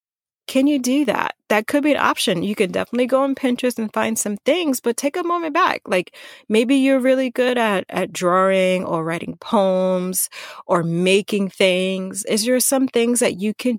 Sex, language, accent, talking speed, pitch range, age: female, English, American, 195 wpm, 180-250 Hz, 30-49